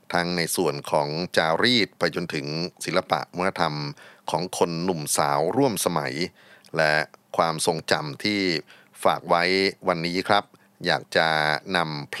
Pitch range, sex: 80-100 Hz, male